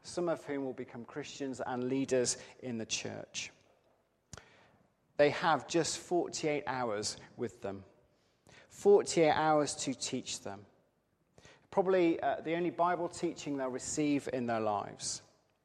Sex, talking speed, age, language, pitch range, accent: male, 130 wpm, 40-59, English, 125-155 Hz, British